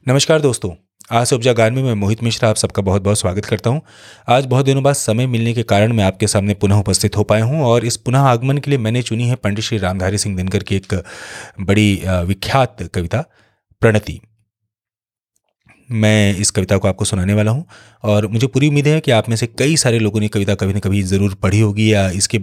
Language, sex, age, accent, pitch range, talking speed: Hindi, male, 30-49, native, 105-135 Hz, 220 wpm